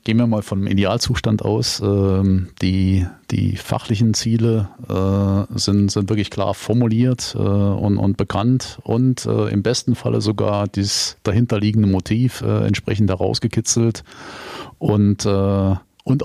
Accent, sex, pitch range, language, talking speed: German, male, 100-120 Hz, German, 110 wpm